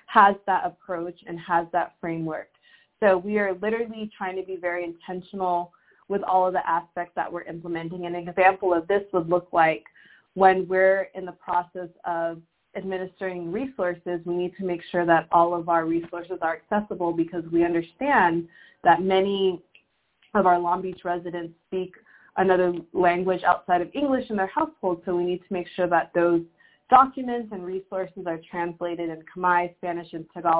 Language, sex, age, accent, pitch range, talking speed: English, female, 20-39, American, 170-190 Hz, 175 wpm